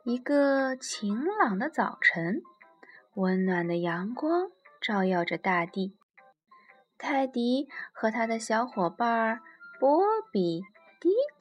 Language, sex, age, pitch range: Chinese, female, 20-39, 195-275 Hz